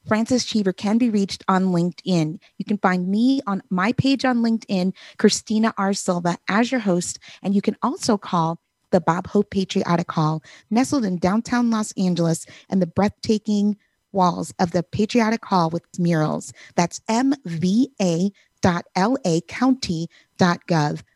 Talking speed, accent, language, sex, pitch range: 140 wpm, American, English, female, 175-225 Hz